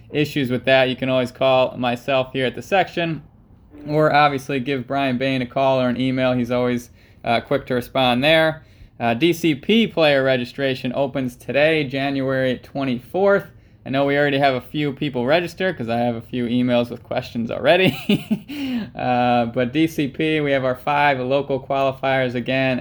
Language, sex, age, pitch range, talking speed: English, male, 20-39, 120-155 Hz, 170 wpm